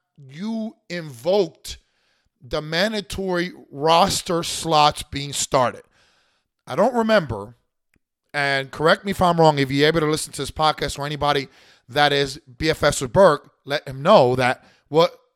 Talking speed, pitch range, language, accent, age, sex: 145 wpm, 145-185 Hz, English, American, 30-49, male